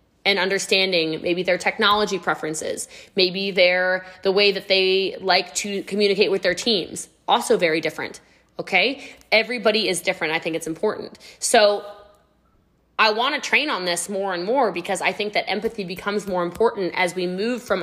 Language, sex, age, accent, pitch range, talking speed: English, female, 20-39, American, 180-215 Hz, 170 wpm